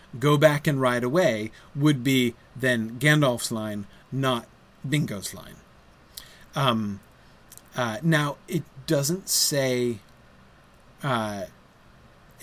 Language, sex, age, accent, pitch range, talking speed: English, male, 30-49, American, 115-140 Hz, 95 wpm